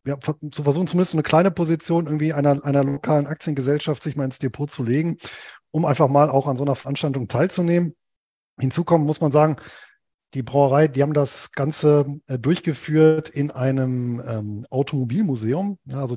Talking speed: 165 wpm